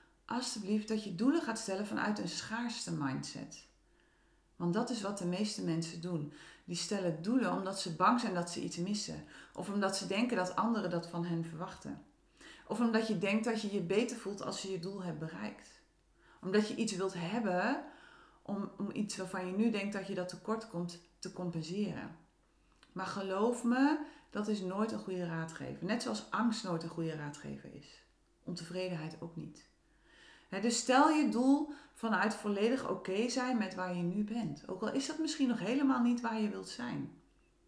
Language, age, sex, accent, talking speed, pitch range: Dutch, 40-59, female, Dutch, 190 wpm, 175-235 Hz